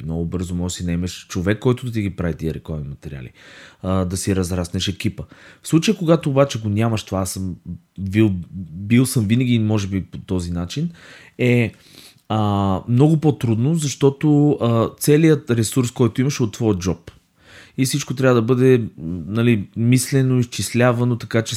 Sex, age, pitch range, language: male, 20-39, 95-125 Hz, Bulgarian